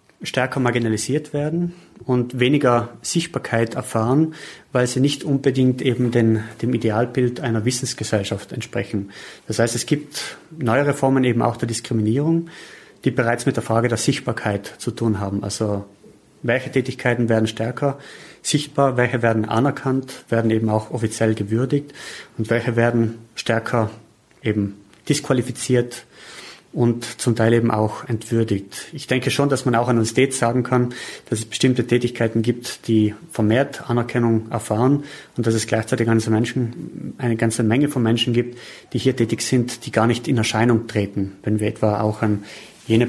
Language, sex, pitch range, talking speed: German, male, 110-130 Hz, 155 wpm